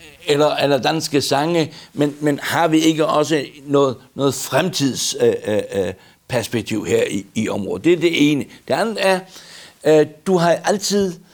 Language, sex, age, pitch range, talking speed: Danish, male, 60-79, 135-175 Hz, 145 wpm